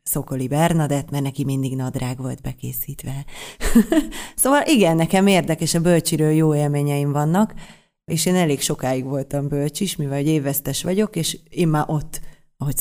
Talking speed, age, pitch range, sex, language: 150 wpm, 30-49, 145-175 Hz, female, Hungarian